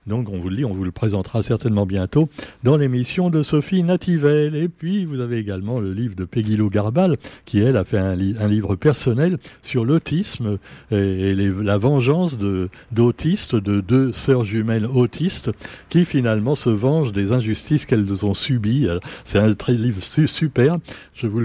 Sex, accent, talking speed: male, French, 175 wpm